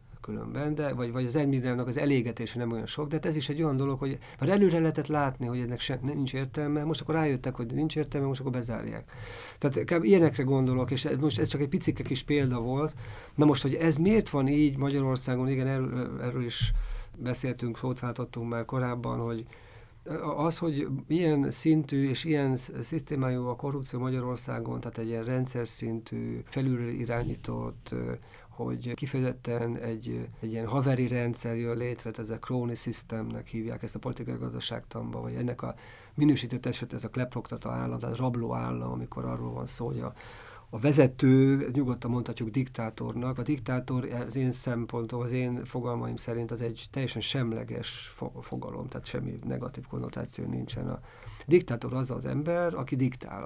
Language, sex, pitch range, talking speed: Hungarian, male, 115-140 Hz, 165 wpm